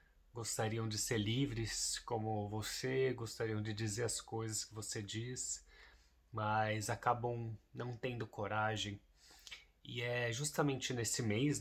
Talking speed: 125 wpm